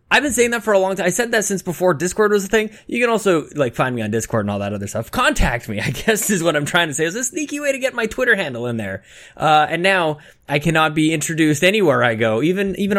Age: 20-39